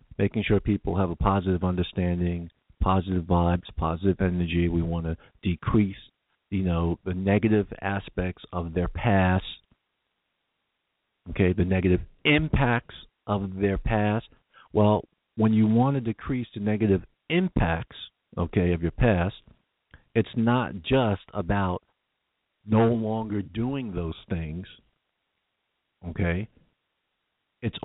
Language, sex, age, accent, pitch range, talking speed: English, male, 50-69, American, 90-120 Hz, 115 wpm